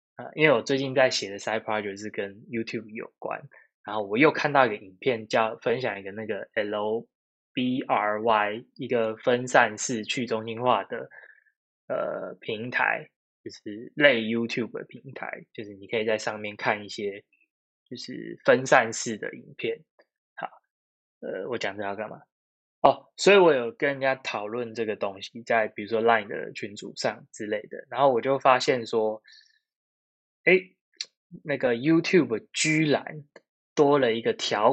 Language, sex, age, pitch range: Chinese, male, 10-29, 110-150 Hz